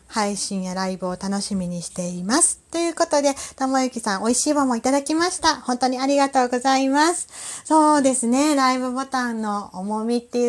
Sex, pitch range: female, 220-305 Hz